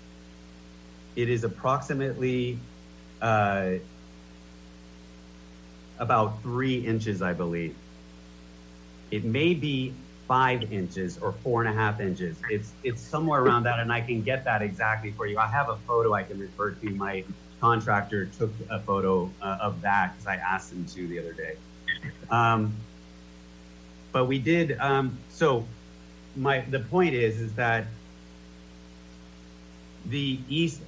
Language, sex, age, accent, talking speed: English, male, 30-49, American, 140 wpm